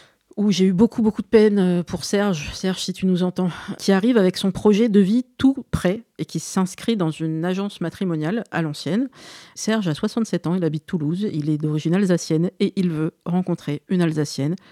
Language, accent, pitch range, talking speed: French, French, 160-200 Hz, 200 wpm